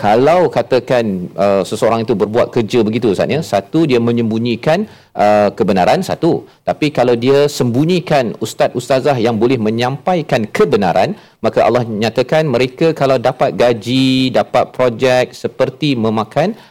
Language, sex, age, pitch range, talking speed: Malayalam, male, 40-59, 105-145 Hz, 130 wpm